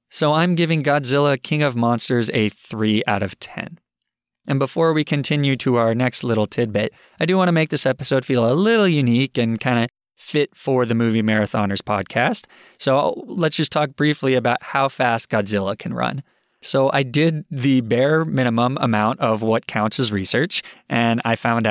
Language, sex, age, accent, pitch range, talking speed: English, male, 20-39, American, 110-140 Hz, 185 wpm